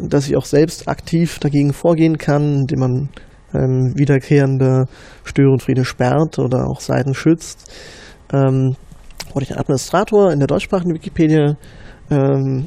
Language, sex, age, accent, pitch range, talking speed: German, male, 20-39, German, 130-155 Hz, 130 wpm